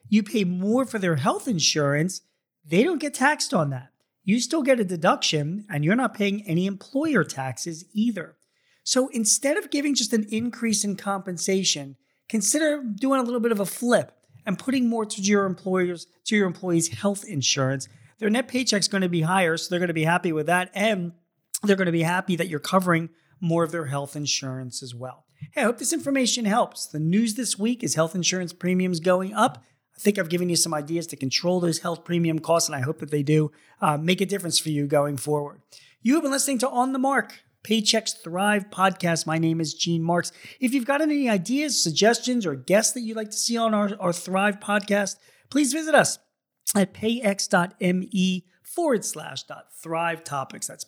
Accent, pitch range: American, 165-225 Hz